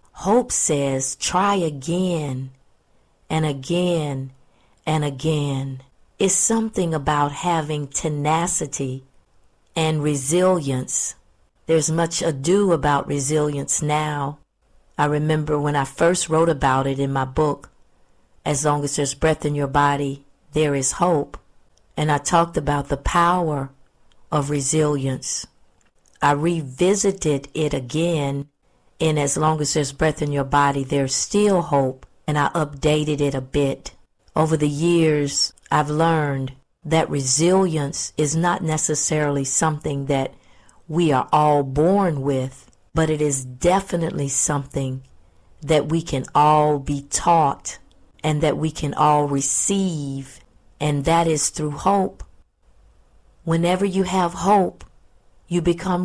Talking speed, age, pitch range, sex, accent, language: 125 wpm, 40-59, 140-165 Hz, female, American, English